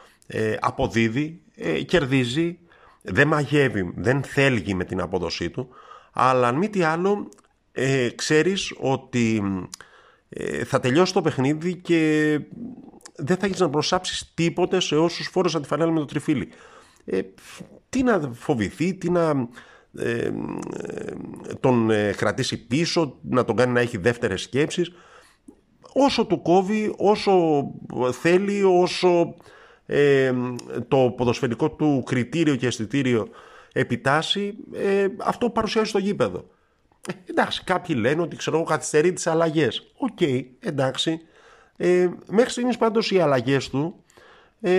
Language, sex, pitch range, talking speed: Greek, male, 120-175 Hz, 125 wpm